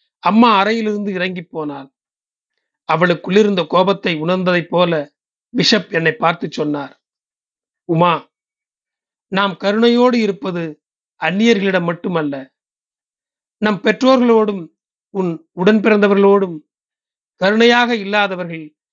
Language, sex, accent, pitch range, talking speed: Tamil, male, native, 165-210 Hz, 80 wpm